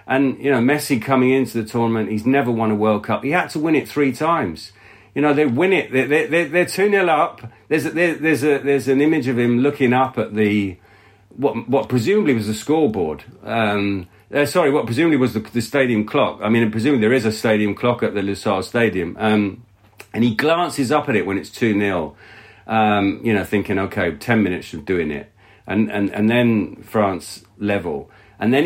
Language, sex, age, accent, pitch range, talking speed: English, male, 40-59, British, 95-125 Hz, 215 wpm